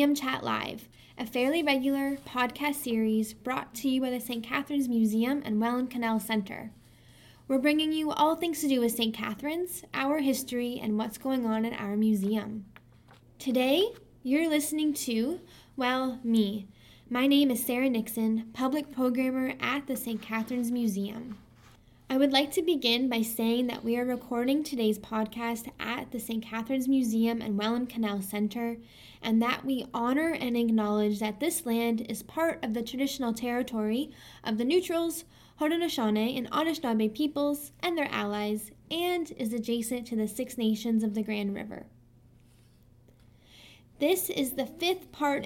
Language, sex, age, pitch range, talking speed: English, female, 10-29, 220-275 Hz, 155 wpm